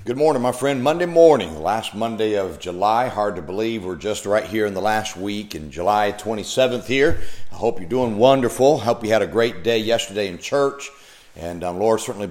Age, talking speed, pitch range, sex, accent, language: 50-69, 215 wpm, 105-125 Hz, male, American, English